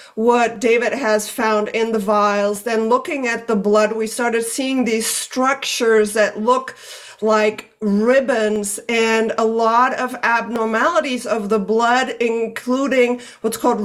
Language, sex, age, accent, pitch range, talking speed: English, female, 50-69, American, 220-260 Hz, 140 wpm